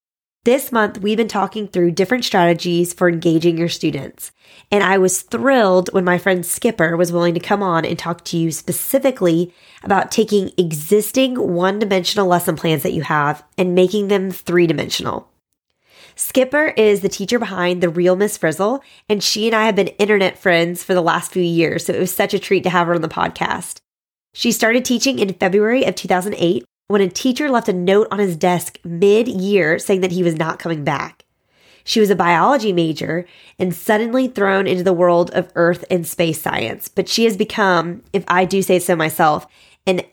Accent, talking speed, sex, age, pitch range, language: American, 190 wpm, female, 20-39, 175-210 Hz, English